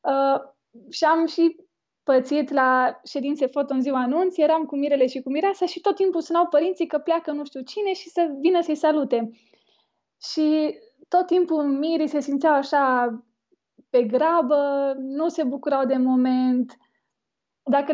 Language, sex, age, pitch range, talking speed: Romanian, female, 20-39, 255-305 Hz, 155 wpm